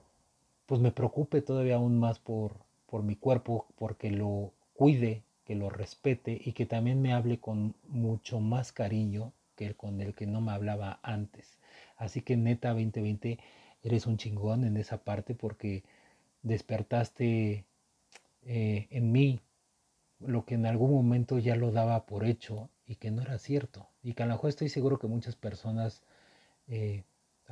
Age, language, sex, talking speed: 40-59, Spanish, male, 165 wpm